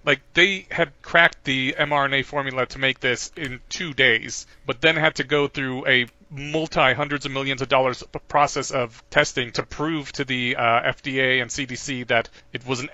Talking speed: 165 wpm